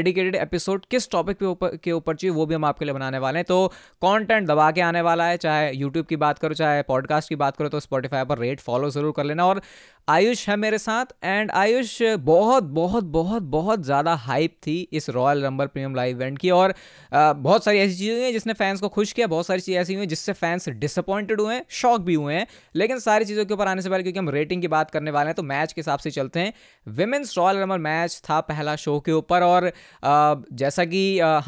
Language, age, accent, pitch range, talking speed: Hindi, 20-39, native, 145-190 Hz, 240 wpm